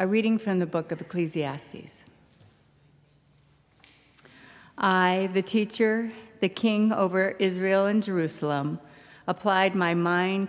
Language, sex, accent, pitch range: English, female, American, 155-190 Hz